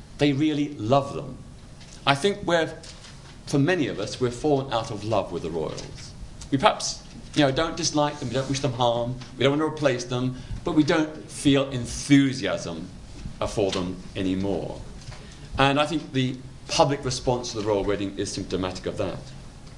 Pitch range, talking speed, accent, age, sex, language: 110-145 Hz, 180 wpm, British, 40-59, male, English